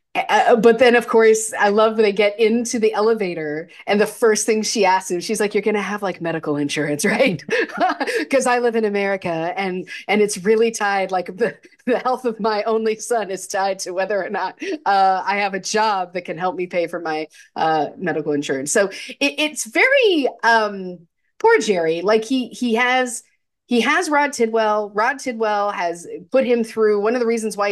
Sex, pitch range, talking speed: female, 180-230 Hz, 205 wpm